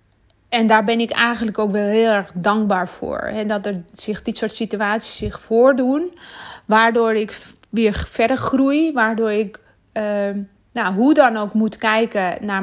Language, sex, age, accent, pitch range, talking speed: Dutch, female, 20-39, Dutch, 200-235 Hz, 165 wpm